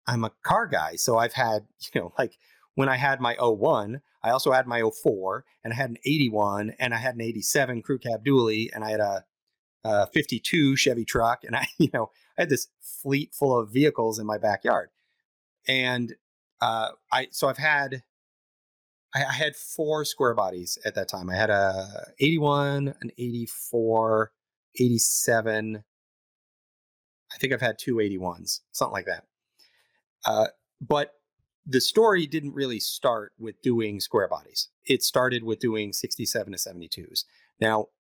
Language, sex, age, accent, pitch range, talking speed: English, male, 30-49, American, 105-135 Hz, 165 wpm